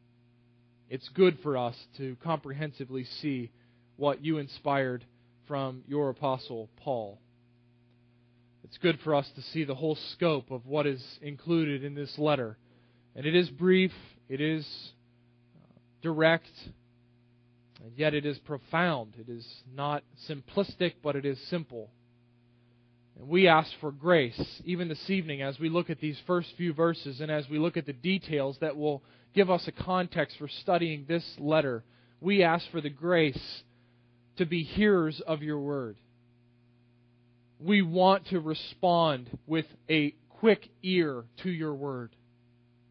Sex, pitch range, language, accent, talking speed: male, 120-165 Hz, English, American, 145 wpm